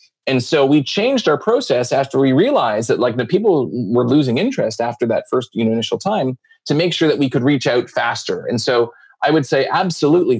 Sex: male